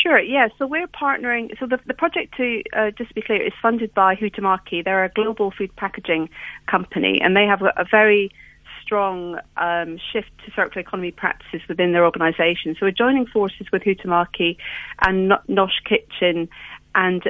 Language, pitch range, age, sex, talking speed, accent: English, 180-215 Hz, 40-59, female, 175 wpm, British